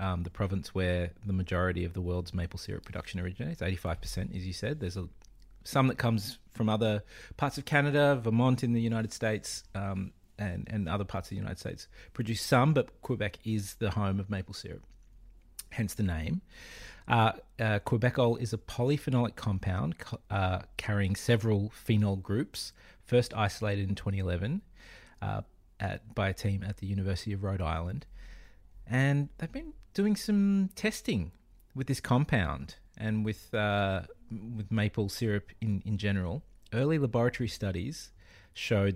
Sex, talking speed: male, 155 wpm